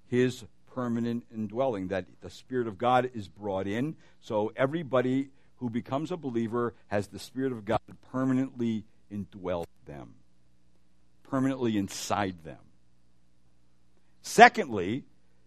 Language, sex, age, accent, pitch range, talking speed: English, male, 60-79, American, 100-150 Hz, 115 wpm